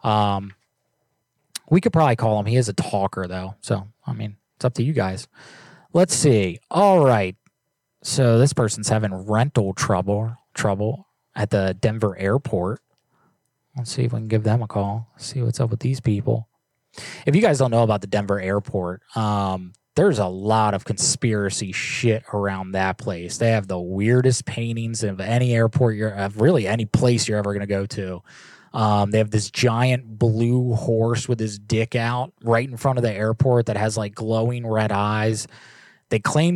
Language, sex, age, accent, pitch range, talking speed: English, male, 20-39, American, 100-125 Hz, 185 wpm